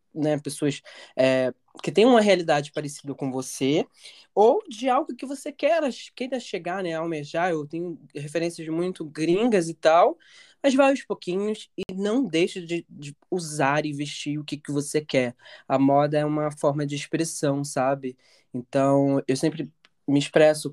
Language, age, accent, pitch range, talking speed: Portuguese, 20-39, Brazilian, 140-180 Hz, 170 wpm